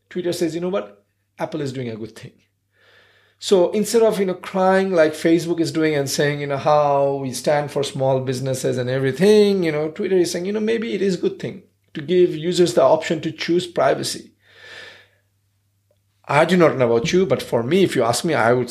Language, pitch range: English, 115-175 Hz